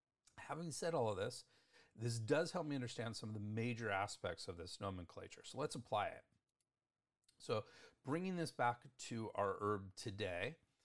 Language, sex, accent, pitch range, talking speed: English, male, American, 105-145 Hz, 165 wpm